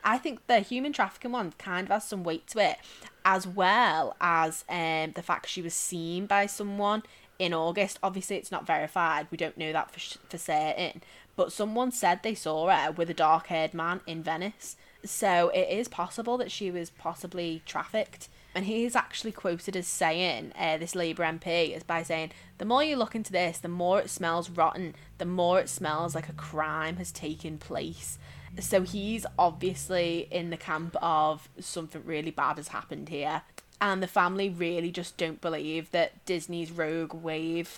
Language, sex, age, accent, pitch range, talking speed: English, female, 20-39, British, 160-190 Hz, 190 wpm